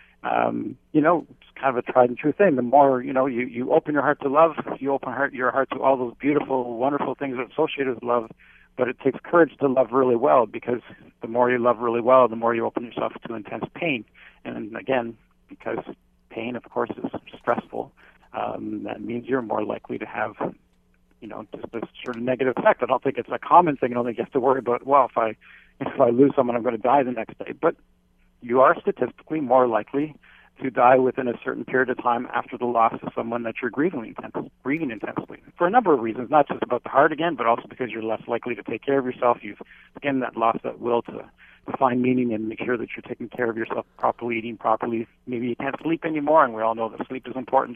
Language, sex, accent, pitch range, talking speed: English, male, American, 115-135 Hz, 245 wpm